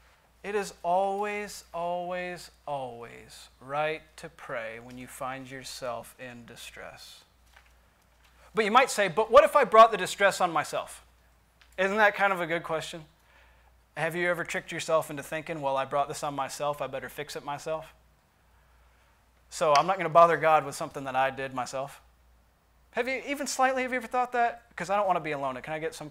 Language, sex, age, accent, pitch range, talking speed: English, male, 30-49, American, 130-195 Hz, 195 wpm